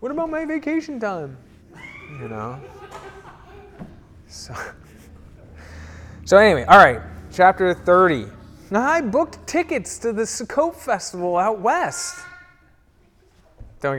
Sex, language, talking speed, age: male, English, 105 wpm, 20-39